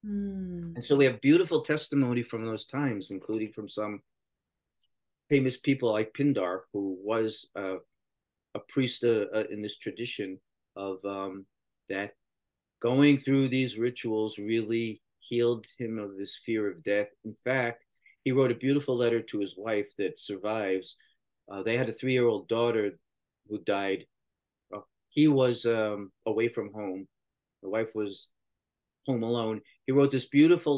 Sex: male